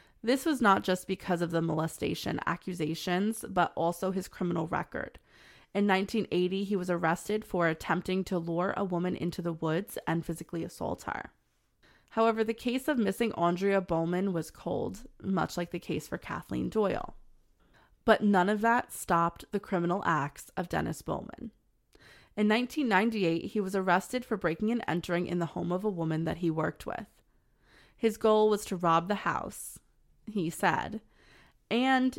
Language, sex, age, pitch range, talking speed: English, female, 20-39, 170-215 Hz, 165 wpm